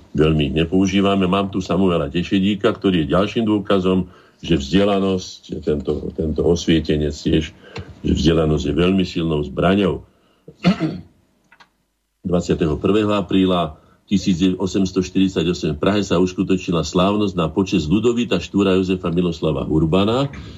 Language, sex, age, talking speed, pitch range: Slovak, male, 50-69, 110 wpm, 85-110 Hz